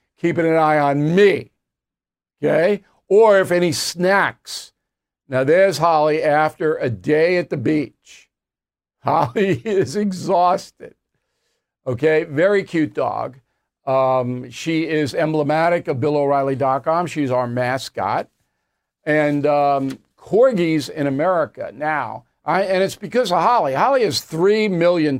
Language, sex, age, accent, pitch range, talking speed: English, male, 60-79, American, 145-180 Hz, 120 wpm